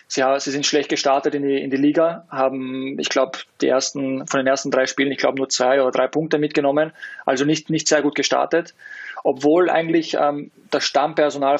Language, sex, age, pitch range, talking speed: German, male, 20-39, 135-145 Hz, 195 wpm